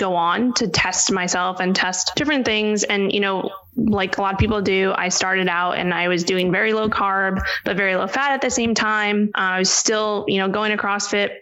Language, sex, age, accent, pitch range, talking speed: English, female, 20-39, American, 190-215 Hz, 235 wpm